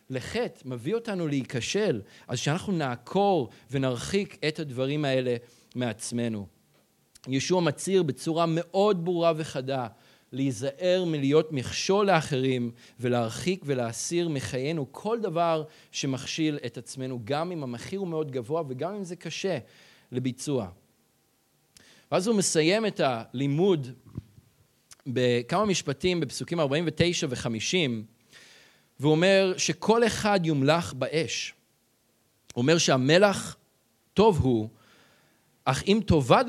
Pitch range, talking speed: 125-170 Hz, 105 wpm